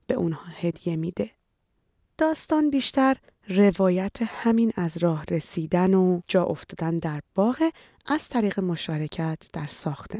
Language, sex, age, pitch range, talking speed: Persian, female, 30-49, 170-280 Hz, 125 wpm